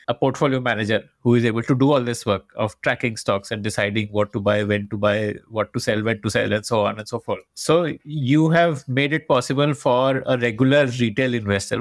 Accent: Indian